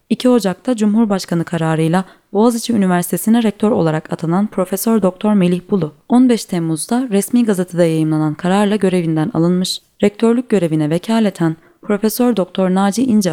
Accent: native